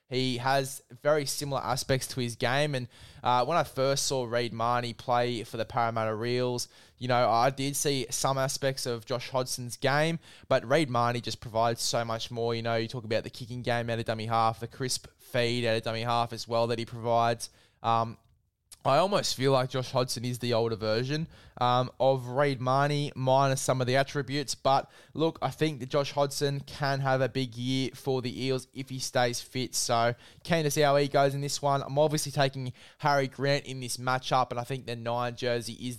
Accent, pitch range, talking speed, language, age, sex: Australian, 120-140 Hz, 215 wpm, English, 10-29, male